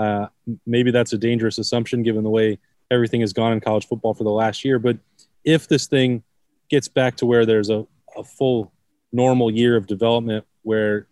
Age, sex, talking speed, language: 20-39, male, 195 wpm, English